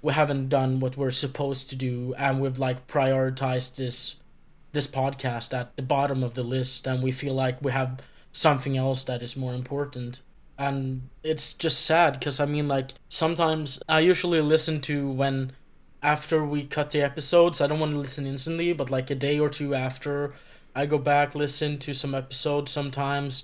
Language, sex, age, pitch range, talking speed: English, male, 20-39, 130-150 Hz, 185 wpm